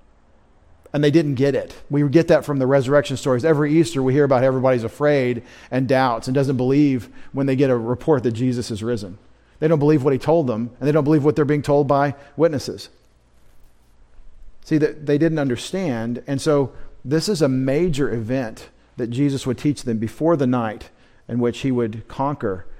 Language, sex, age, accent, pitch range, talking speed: English, male, 40-59, American, 115-145 Hz, 195 wpm